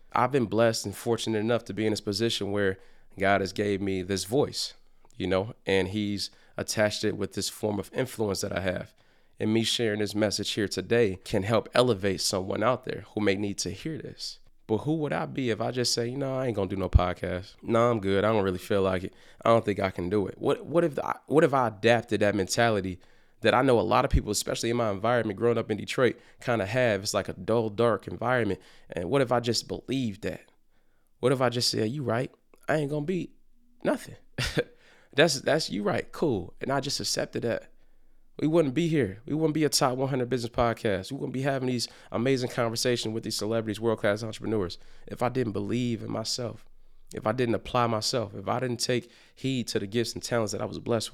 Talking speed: 235 wpm